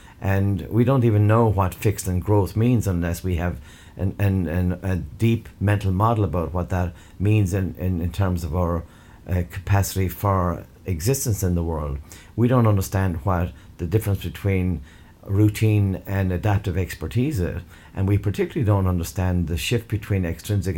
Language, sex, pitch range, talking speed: English, male, 90-105 Hz, 160 wpm